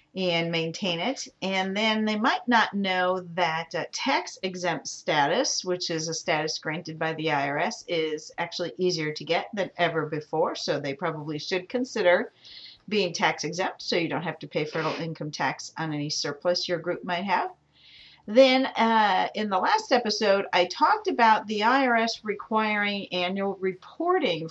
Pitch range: 160-205 Hz